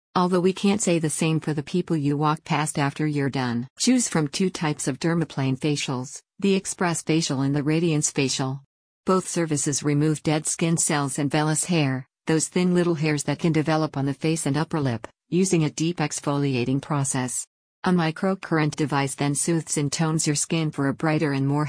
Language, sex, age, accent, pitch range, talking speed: English, female, 50-69, American, 140-165 Hz, 195 wpm